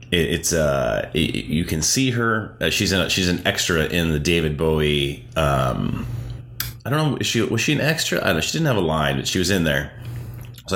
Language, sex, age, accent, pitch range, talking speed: English, male, 30-49, American, 80-105 Hz, 225 wpm